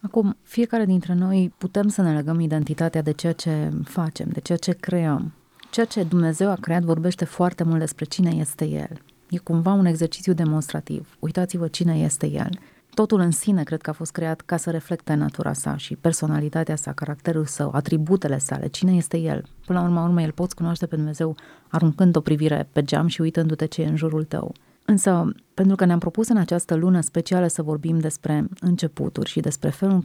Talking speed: 200 wpm